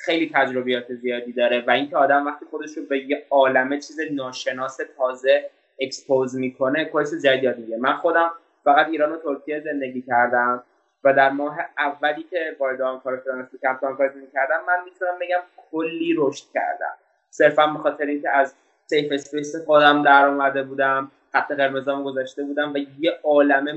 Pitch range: 135-165 Hz